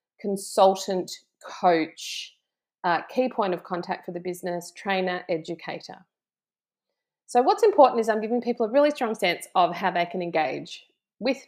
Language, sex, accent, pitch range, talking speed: English, female, Australian, 170-200 Hz, 150 wpm